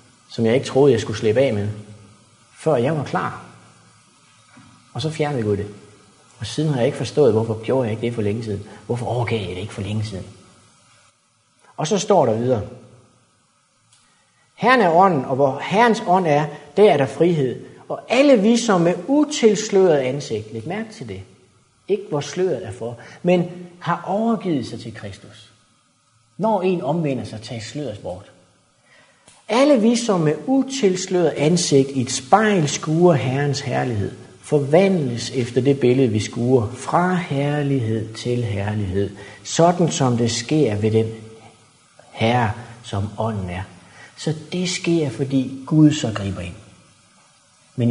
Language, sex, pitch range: Danish, male, 110-165 Hz